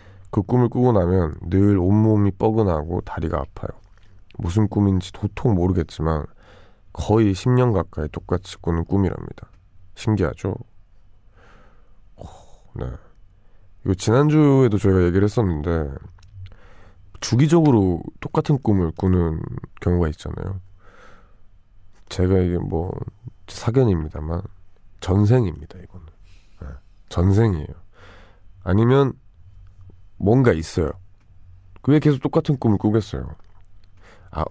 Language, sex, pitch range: Korean, male, 90-105 Hz